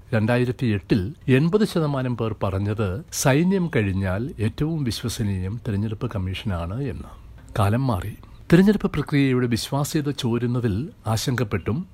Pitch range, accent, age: 110-145 Hz, native, 60-79